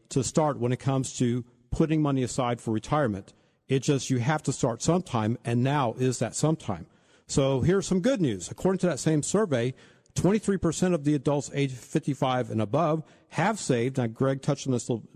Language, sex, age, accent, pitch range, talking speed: English, male, 50-69, American, 120-160 Hz, 200 wpm